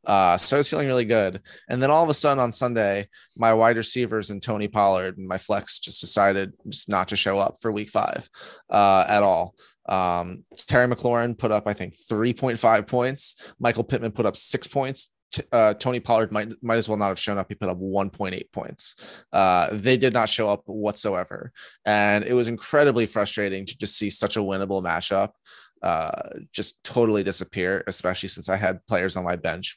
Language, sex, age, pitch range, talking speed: English, male, 20-39, 100-120 Hz, 200 wpm